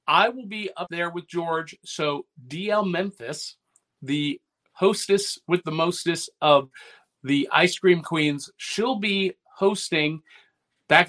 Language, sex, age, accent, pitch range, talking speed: English, male, 50-69, American, 155-195 Hz, 130 wpm